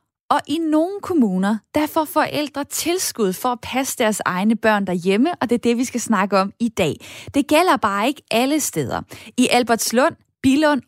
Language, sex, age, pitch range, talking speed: Danish, female, 20-39, 210-270 Hz, 190 wpm